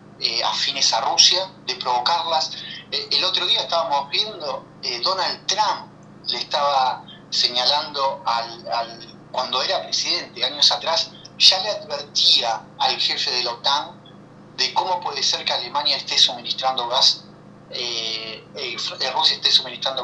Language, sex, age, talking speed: Spanish, male, 30-49, 130 wpm